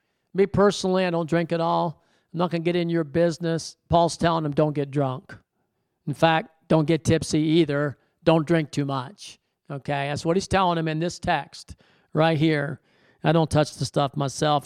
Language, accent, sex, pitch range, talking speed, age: English, American, male, 165-230 Hz, 195 wpm, 50-69